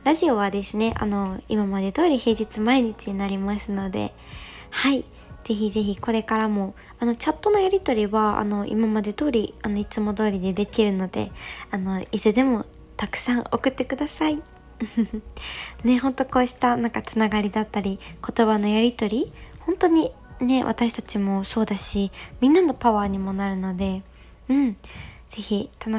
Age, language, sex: 20-39, Japanese, male